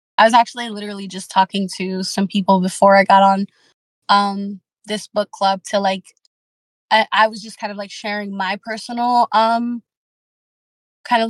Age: 20-39